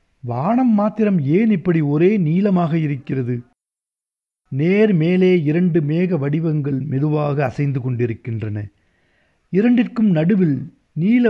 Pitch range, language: 140-210 Hz, Tamil